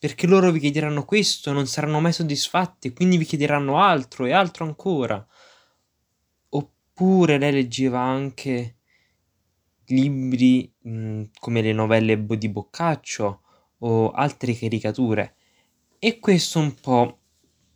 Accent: native